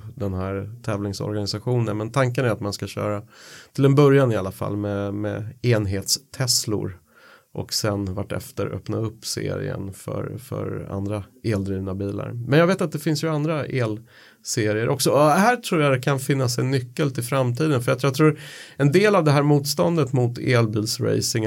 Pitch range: 110-140 Hz